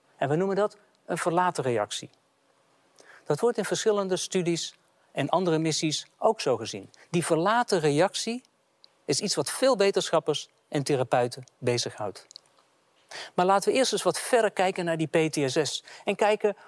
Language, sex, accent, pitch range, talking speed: Dutch, male, Dutch, 155-210 Hz, 150 wpm